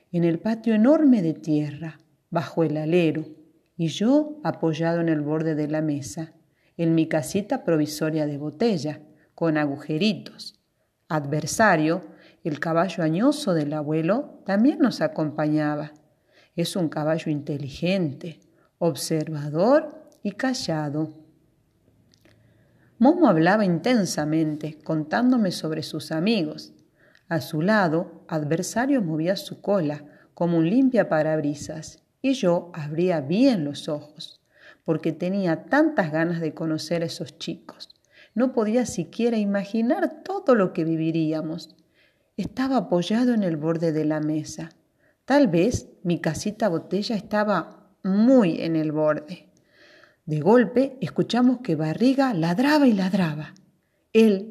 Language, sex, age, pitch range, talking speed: Spanish, female, 40-59, 155-210 Hz, 120 wpm